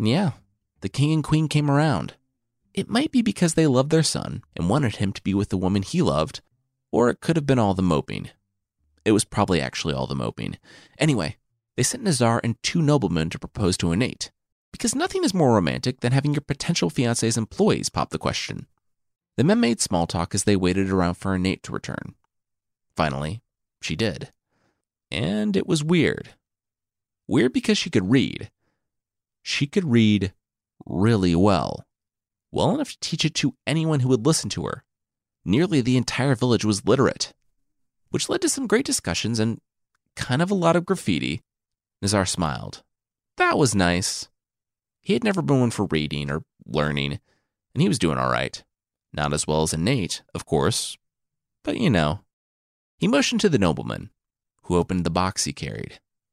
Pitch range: 90-150 Hz